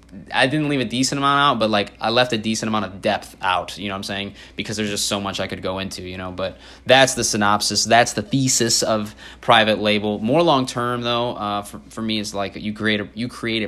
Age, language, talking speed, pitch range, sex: 20-39, English, 250 wpm, 95-115 Hz, male